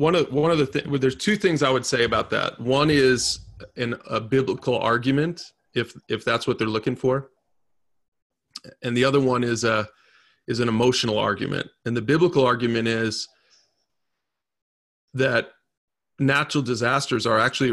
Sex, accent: male, American